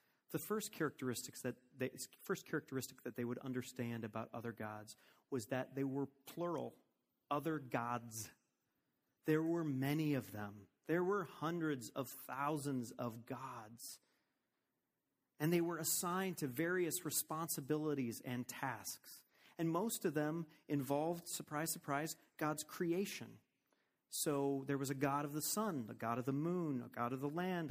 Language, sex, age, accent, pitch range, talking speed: English, male, 30-49, American, 125-160 Hz, 150 wpm